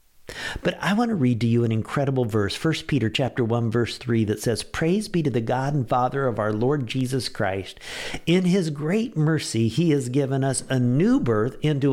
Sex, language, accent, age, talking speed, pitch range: male, English, American, 50-69, 210 wpm, 105-150 Hz